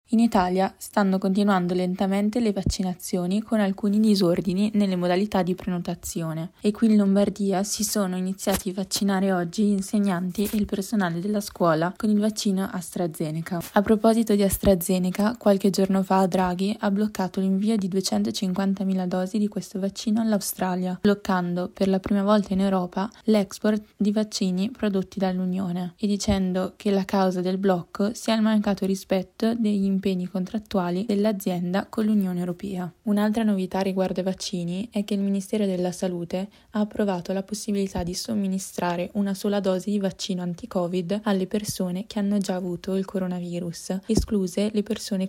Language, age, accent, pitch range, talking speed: Italian, 20-39, native, 185-205 Hz, 155 wpm